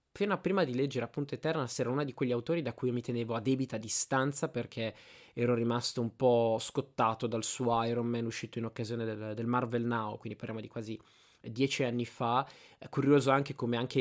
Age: 20-39